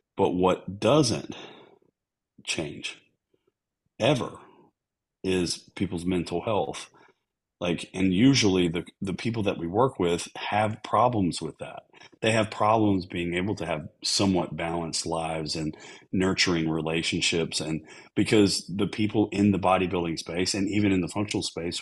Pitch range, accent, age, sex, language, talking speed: 85-100 Hz, American, 40-59, male, English, 140 wpm